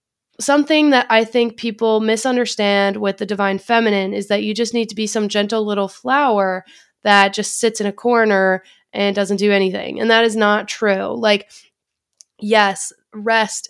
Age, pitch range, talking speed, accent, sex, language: 20-39, 205-245 Hz, 170 wpm, American, female, English